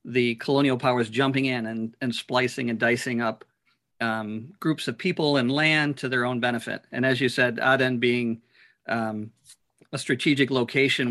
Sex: male